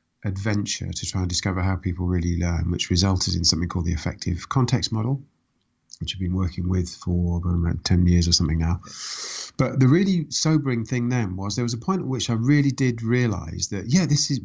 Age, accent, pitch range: 40-59, British, 95-120 Hz